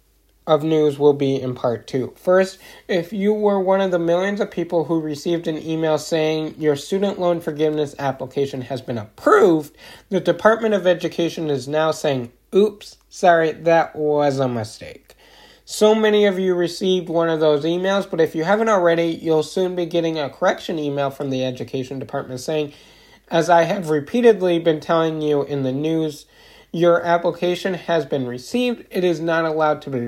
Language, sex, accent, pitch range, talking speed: English, male, American, 140-180 Hz, 180 wpm